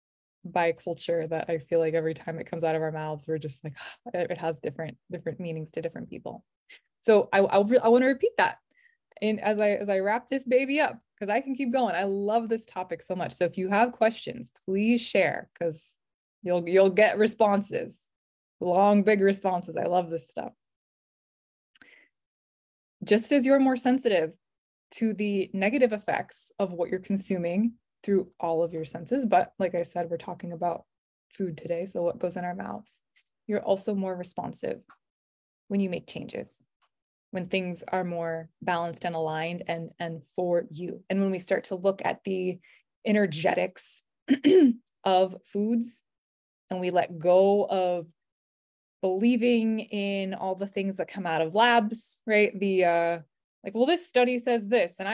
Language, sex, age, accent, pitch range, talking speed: English, female, 20-39, American, 170-215 Hz, 175 wpm